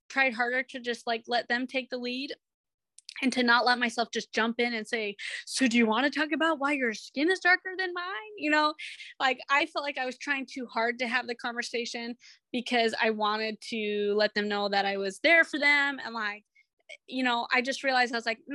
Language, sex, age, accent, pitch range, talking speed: English, female, 20-39, American, 235-280 Hz, 235 wpm